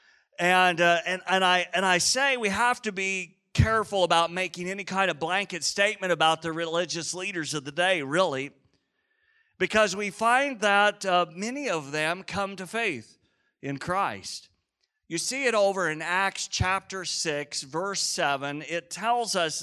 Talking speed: 165 wpm